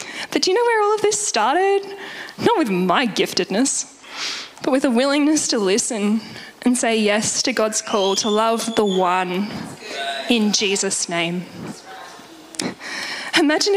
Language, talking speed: English, 145 wpm